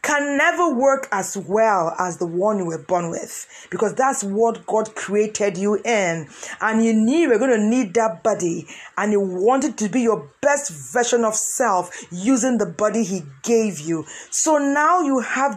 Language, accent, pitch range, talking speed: English, Nigerian, 190-250 Hz, 185 wpm